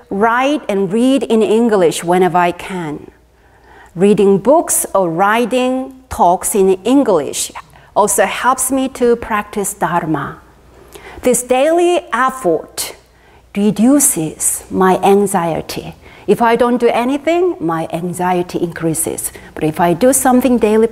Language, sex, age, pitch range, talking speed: English, female, 40-59, 175-255 Hz, 120 wpm